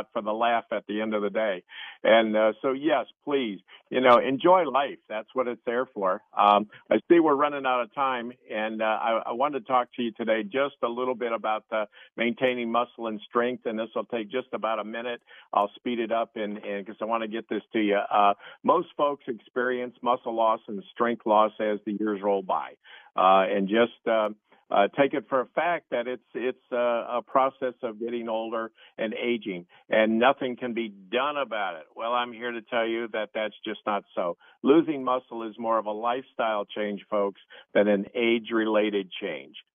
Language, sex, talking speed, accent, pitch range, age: English, male, 210 wpm, American, 110-125 Hz, 50-69